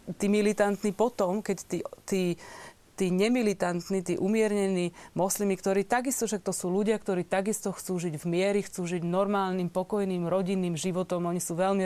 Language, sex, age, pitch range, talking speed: Slovak, female, 30-49, 185-210 Hz, 160 wpm